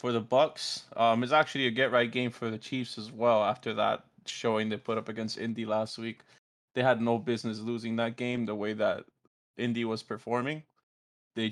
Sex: male